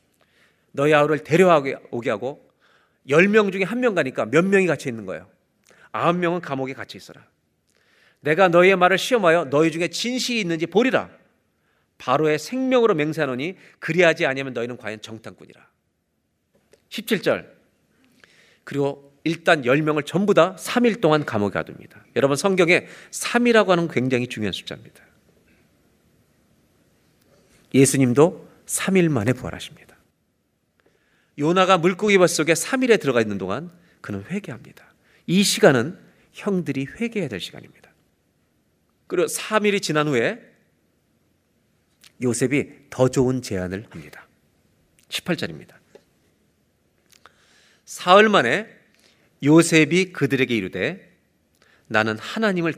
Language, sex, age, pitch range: Korean, male, 40-59, 125-195 Hz